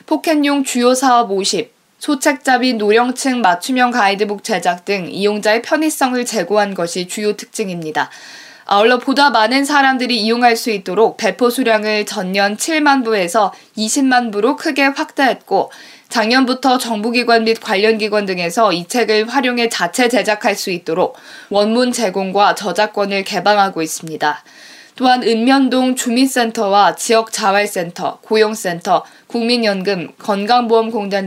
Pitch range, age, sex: 205-255 Hz, 20-39, female